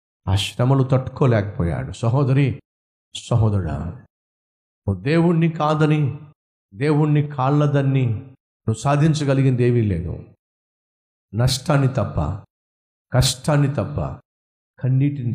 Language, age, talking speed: Telugu, 50-69, 65 wpm